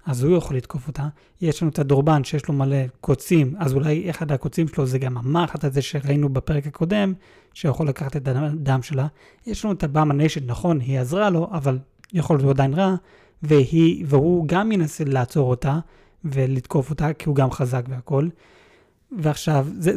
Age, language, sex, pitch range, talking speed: 30-49, Hebrew, male, 135-170 Hz, 175 wpm